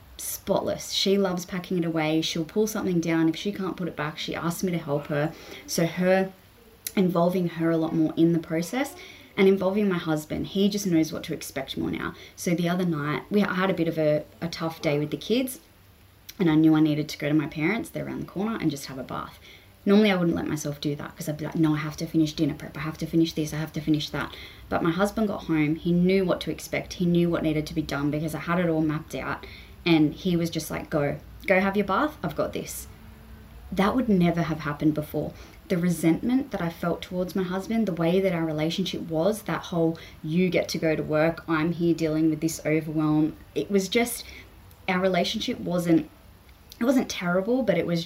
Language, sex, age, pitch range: English, female, 20-39, 155-190 Hz